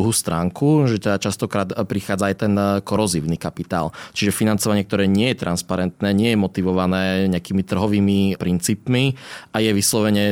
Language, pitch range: Slovak, 95-105 Hz